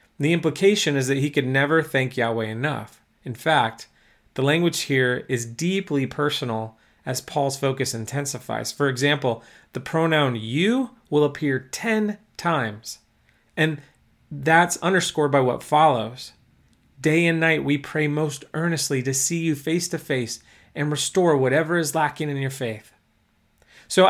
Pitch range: 125-165 Hz